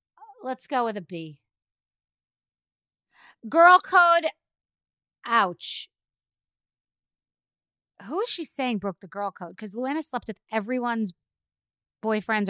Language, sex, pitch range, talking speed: English, female, 200-285 Hz, 105 wpm